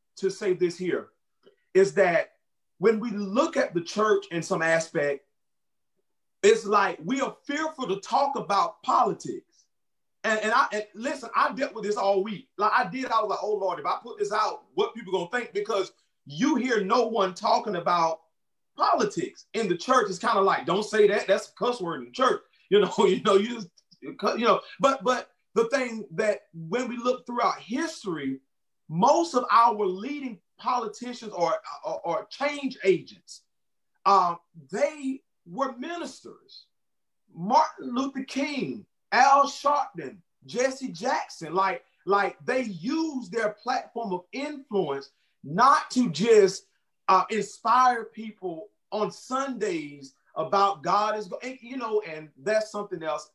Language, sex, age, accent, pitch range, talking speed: English, male, 30-49, American, 190-255 Hz, 160 wpm